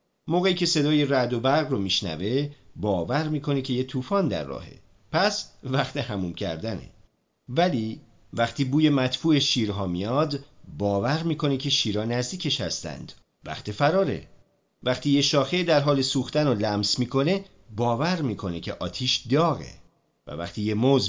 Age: 40-59